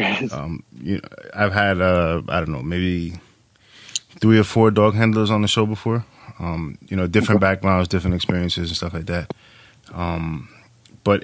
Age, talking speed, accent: 20-39, 165 wpm, American